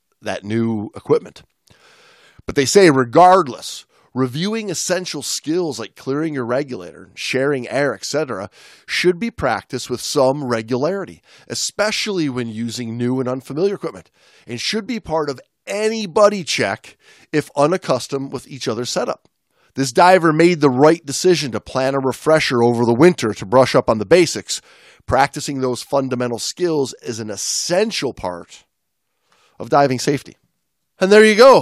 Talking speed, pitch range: 150 wpm, 120-165 Hz